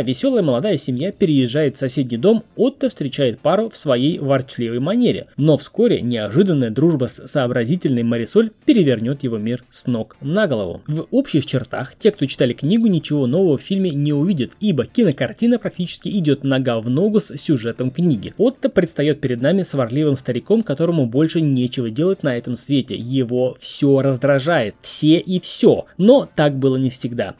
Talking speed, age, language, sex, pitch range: 165 wpm, 20-39, Russian, male, 130-195 Hz